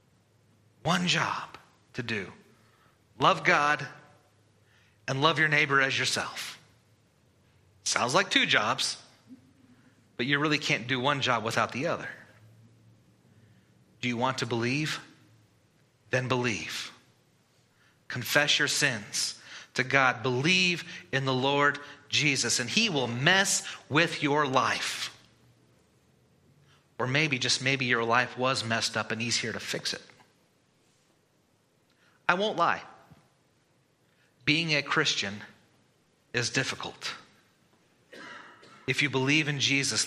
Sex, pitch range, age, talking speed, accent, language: male, 120-145 Hz, 30-49, 115 wpm, American, English